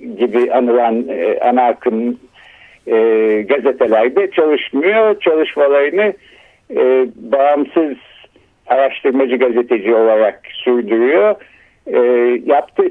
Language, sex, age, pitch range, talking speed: Turkish, male, 60-79, 125-190 Hz, 60 wpm